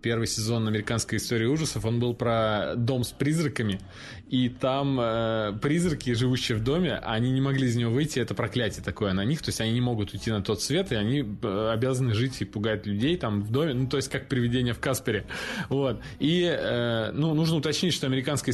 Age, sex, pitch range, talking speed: 20-39, male, 115-140 Hz, 205 wpm